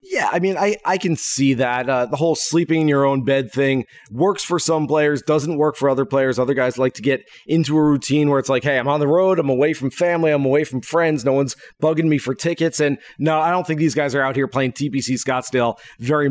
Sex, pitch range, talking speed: male, 130-155 Hz, 260 wpm